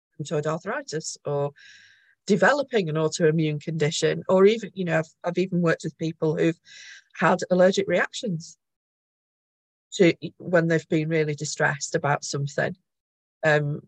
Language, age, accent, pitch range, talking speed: English, 40-59, British, 155-210 Hz, 125 wpm